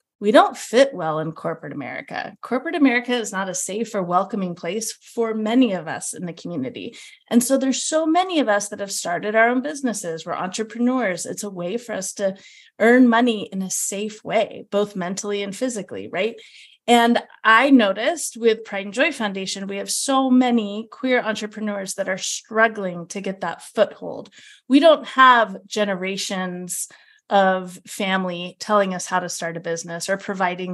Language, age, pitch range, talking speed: English, 30-49, 185-235 Hz, 180 wpm